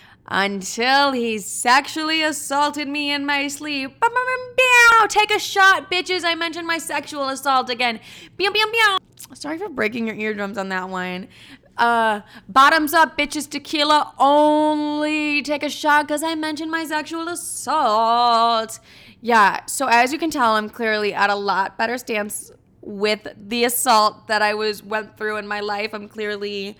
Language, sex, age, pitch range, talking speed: English, female, 20-39, 210-295 Hz, 155 wpm